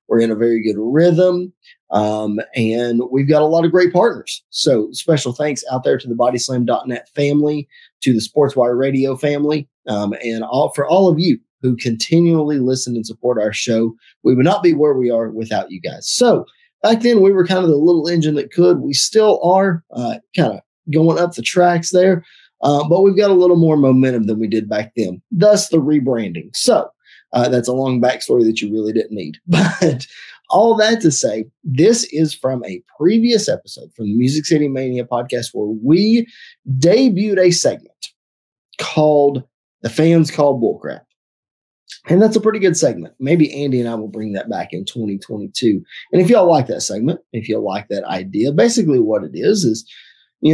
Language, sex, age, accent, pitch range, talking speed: English, male, 20-39, American, 120-170 Hz, 195 wpm